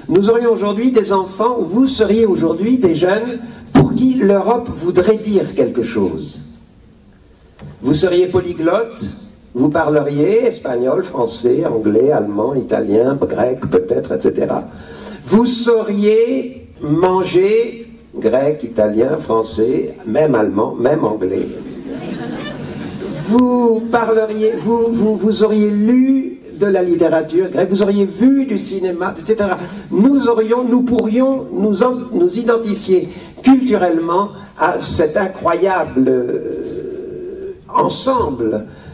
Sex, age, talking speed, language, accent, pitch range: male, 50-69, 110 wpm, Italian, French, 170-240 Hz